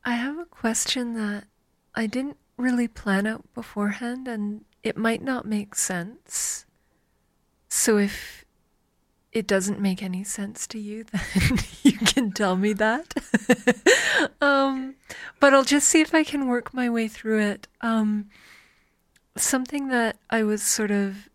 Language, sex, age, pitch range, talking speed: English, female, 30-49, 200-240 Hz, 145 wpm